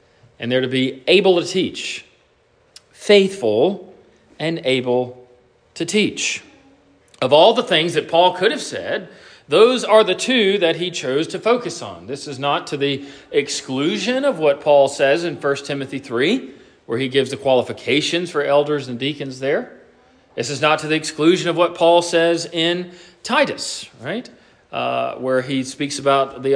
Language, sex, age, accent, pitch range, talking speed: English, male, 40-59, American, 135-200 Hz, 170 wpm